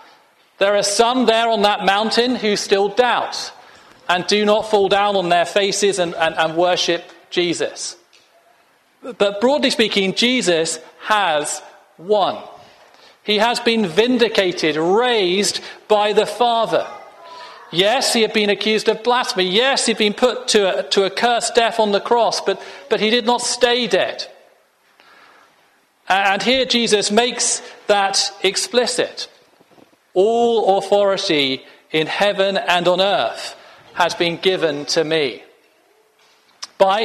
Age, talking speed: 40-59, 135 wpm